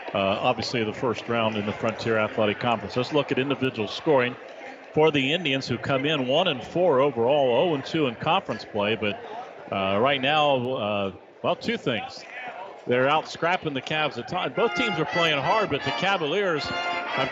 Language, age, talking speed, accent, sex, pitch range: English, 40-59, 185 wpm, American, male, 135-175 Hz